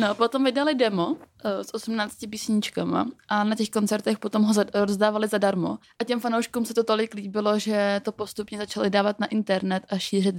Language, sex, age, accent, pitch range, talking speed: Czech, female, 20-39, native, 200-225 Hz, 180 wpm